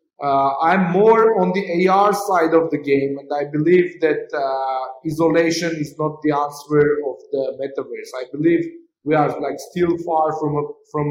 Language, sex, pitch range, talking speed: English, male, 150-175 Hz, 180 wpm